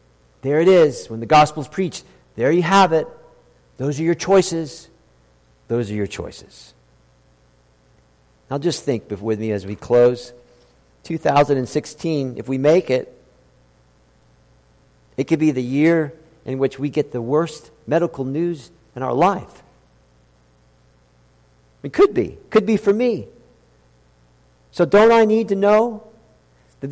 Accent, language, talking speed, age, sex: American, English, 140 wpm, 50-69, male